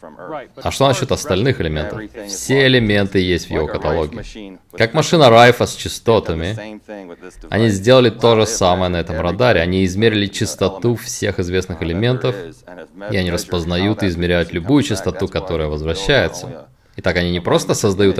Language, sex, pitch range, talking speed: Russian, male, 90-120 Hz, 145 wpm